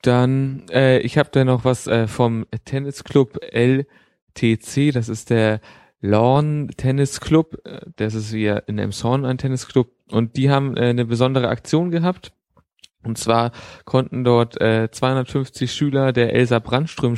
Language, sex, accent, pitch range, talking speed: German, male, German, 110-130 Hz, 145 wpm